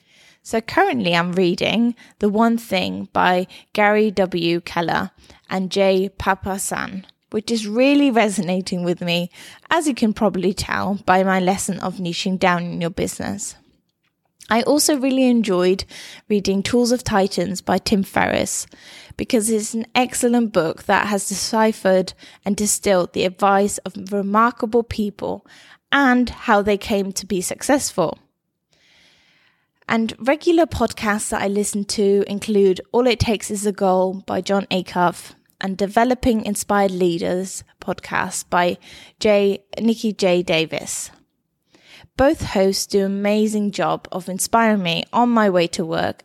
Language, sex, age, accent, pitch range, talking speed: English, female, 10-29, British, 185-230 Hz, 140 wpm